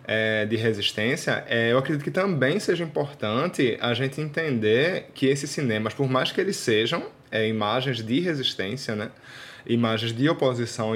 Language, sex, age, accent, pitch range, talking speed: Portuguese, male, 20-39, Brazilian, 115-140 Hz, 140 wpm